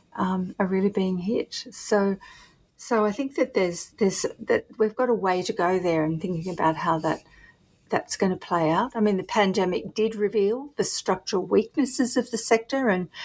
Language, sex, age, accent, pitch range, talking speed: English, female, 50-69, Australian, 185-225 Hz, 195 wpm